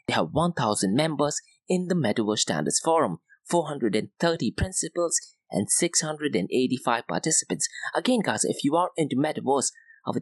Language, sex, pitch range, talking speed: English, male, 125-180 Hz, 135 wpm